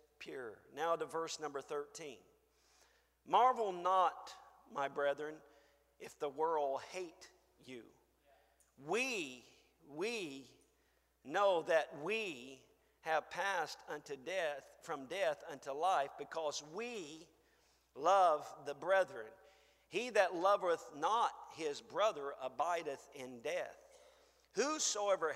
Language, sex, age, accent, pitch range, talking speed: English, male, 50-69, American, 145-205 Hz, 100 wpm